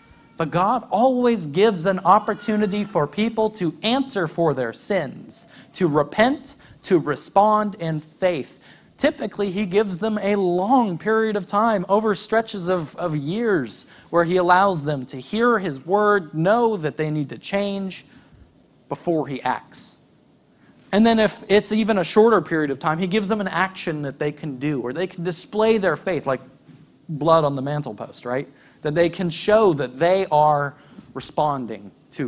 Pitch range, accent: 145-205 Hz, American